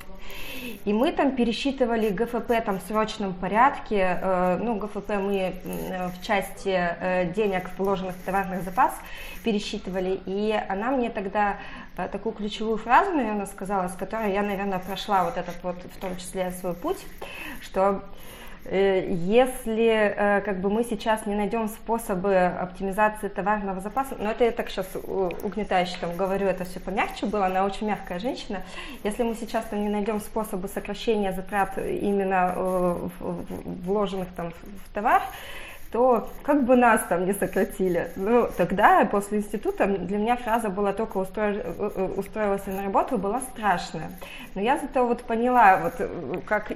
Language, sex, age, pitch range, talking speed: Russian, female, 20-39, 190-225 Hz, 145 wpm